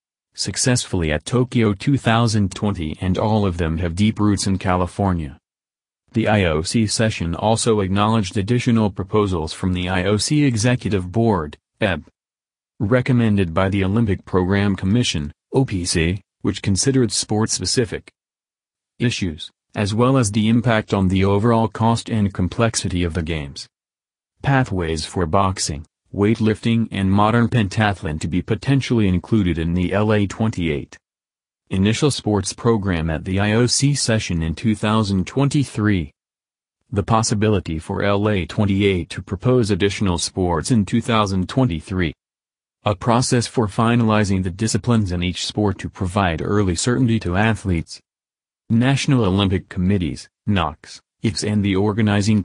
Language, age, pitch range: English, 40-59, 90-115 Hz